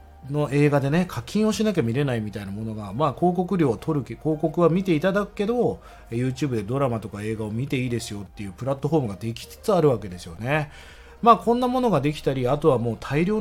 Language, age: Japanese, 40-59